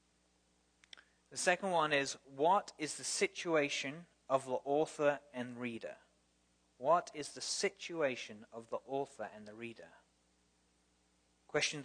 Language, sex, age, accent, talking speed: English, male, 30-49, British, 120 wpm